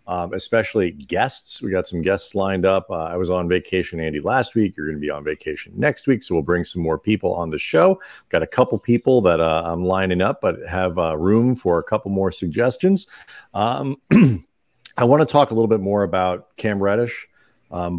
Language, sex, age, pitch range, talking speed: English, male, 40-59, 90-115 Hz, 215 wpm